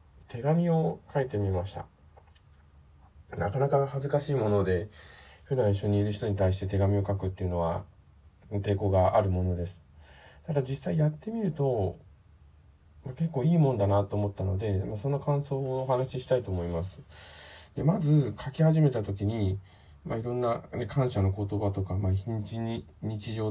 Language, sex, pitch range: Japanese, male, 95-130 Hz